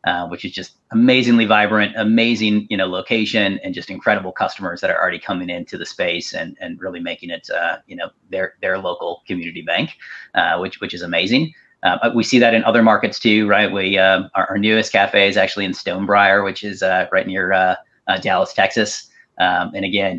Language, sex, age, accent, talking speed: English, male, 30-49, American, 210 wpm